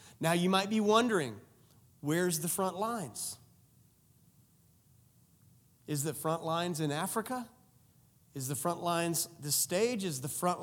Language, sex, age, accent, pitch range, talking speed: English, male, 30-49, American, 150-225 Hz, 135 wpm